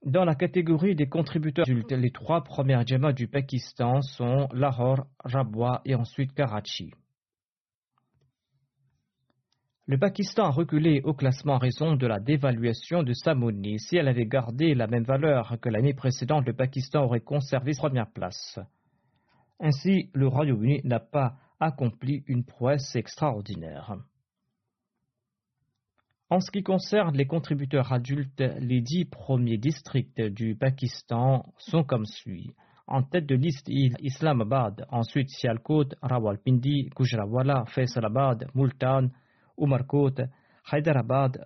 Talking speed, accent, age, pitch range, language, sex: 125 wpm, French, 40-59, 125-145 Hz, French, male